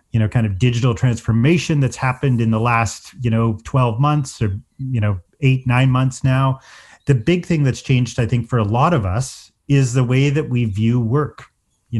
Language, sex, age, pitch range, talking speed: English, male, 30-49, 115-140 Hz, 210 wpm